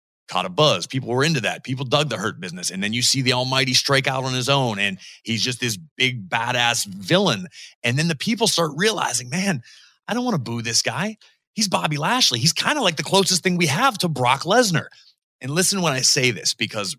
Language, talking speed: English, 235 wpm